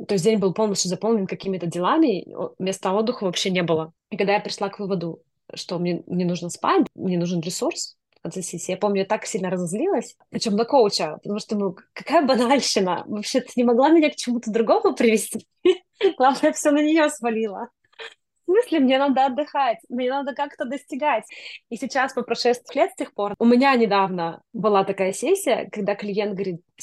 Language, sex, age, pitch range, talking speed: Russian, female, 20-39, 195-240 Hz, 190 wpm